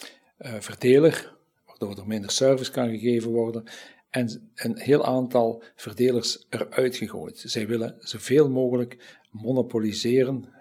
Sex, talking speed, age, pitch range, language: male, 115 wpm, 50-69, 110-130 Hz, Dutch